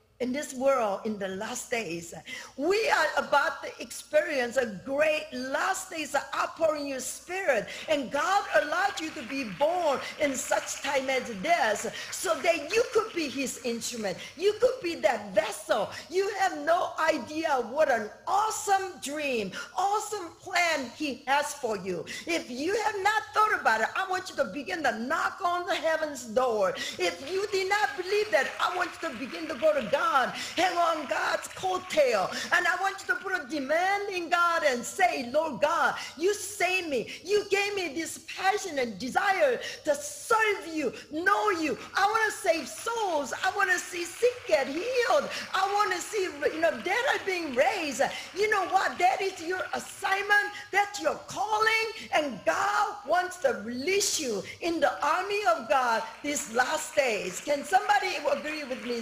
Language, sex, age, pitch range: English, female, 50-69, 275-385 Hz